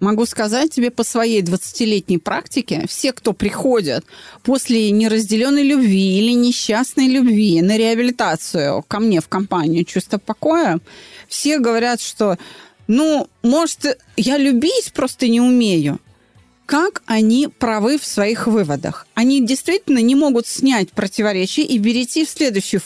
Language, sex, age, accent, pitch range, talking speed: Russian, female, 30-49, native, 210-290 Hz, 130 wpm